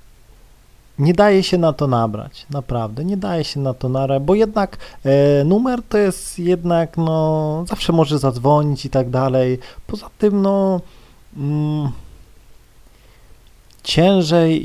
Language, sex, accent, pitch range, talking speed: Polish, male, native, 120-150 Hz, 125 wpm